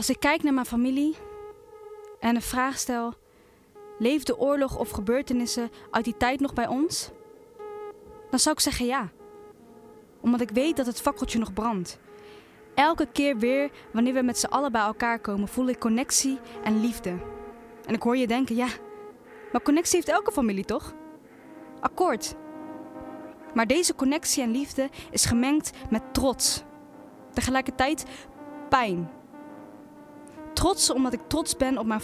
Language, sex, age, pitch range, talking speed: Dutch, female, 10-29, 235-295 Hz, 150 wpm